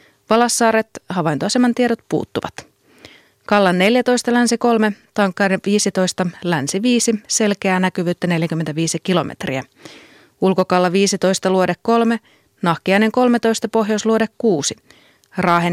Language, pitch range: Finnish, 175-225 Hz